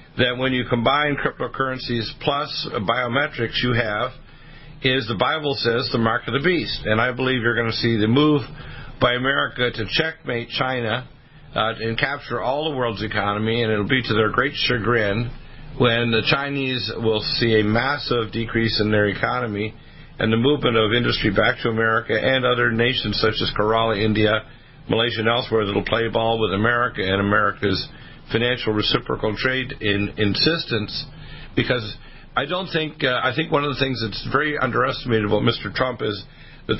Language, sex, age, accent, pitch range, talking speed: English, male, 50-69, American, 110-135 Hz, 175 wpm